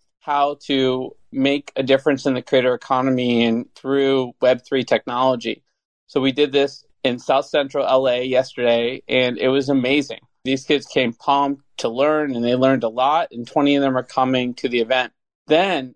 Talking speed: 175 wpm